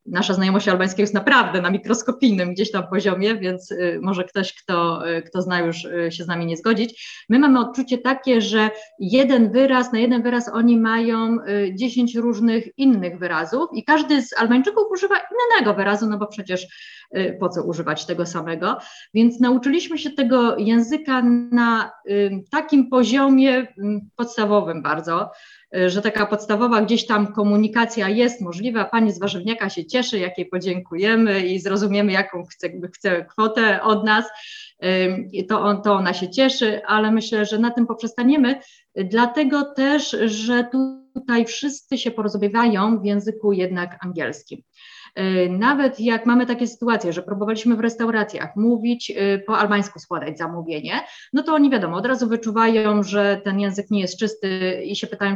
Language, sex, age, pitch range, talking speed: Polish, female, 30-49, 190-245 Hz, 150 wpm